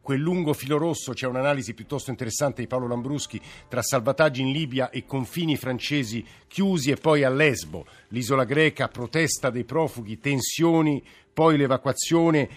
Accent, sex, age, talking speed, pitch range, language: native, male, 50-69, 150 wpm, 115-140 Hz, Italian